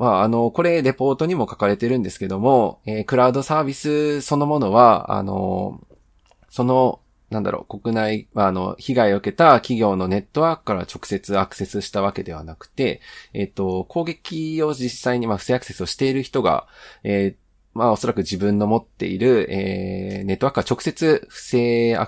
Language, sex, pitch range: Japanese, male, 100-130 Hz